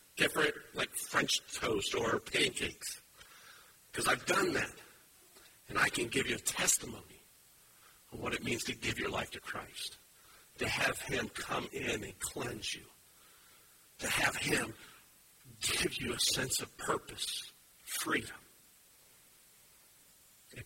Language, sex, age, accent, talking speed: English, male, 60-79, American, 135 wpm